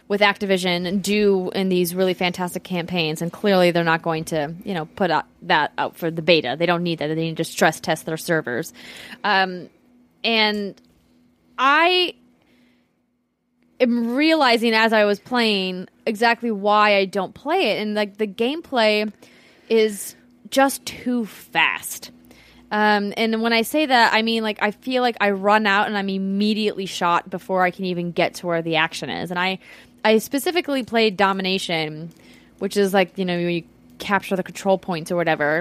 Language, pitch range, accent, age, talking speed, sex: English, 180-225 Hz, American, 20-39, 175 wpm, female